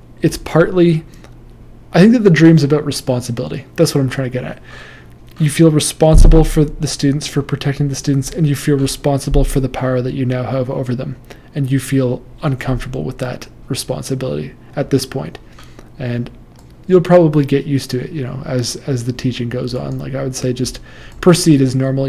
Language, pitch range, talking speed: English, 125-145 Hz, 195 wpm